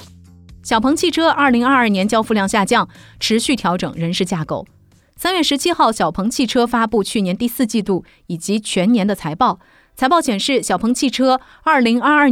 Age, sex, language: 30-49, female, Chinese